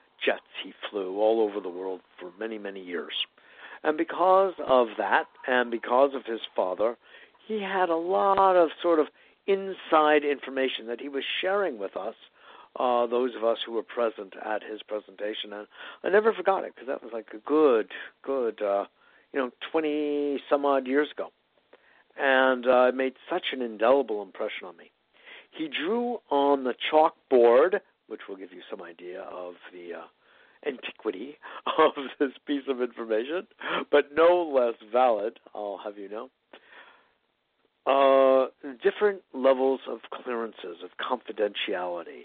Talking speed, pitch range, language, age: 155 wpm, 110-155 Hz, English, 60-79